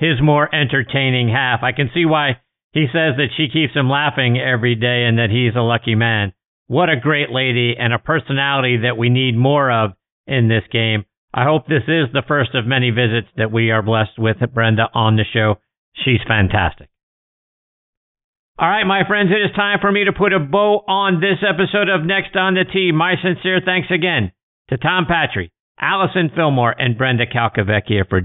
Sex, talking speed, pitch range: male, 195 wpm, 120-175 Hz